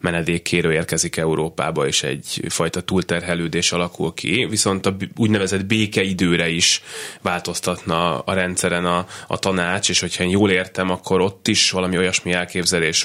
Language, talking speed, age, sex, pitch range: Hungarian, 140 wpm, 20-39, male, 85-95 Hz